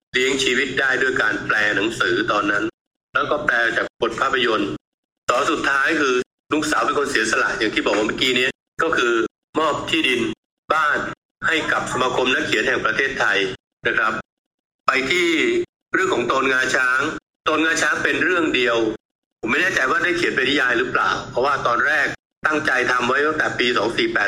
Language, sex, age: Thai, male, 60-79